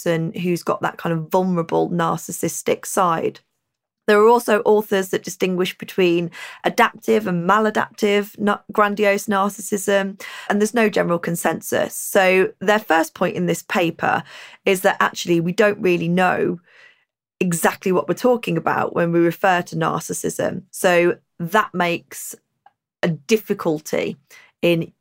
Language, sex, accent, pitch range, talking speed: English, female, British, 175-210 Hz, 130 wpm